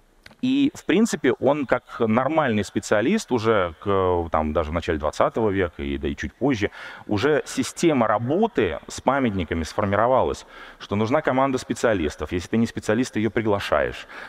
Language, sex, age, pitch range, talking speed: Russian, male, 30-49, 100-125 Hz, 150 wpm